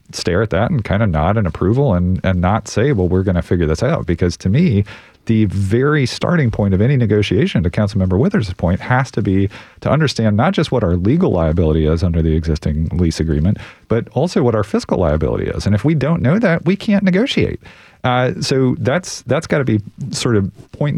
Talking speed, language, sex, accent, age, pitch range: 225 wpm, English, male, American, 40-59, 90-115 Hz